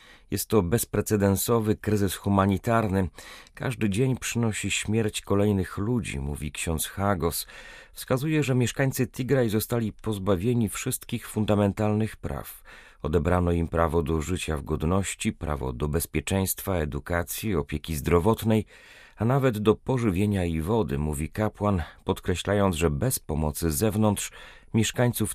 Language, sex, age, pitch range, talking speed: Polish, male, 40-59, 85-110 Hz, 120 wpm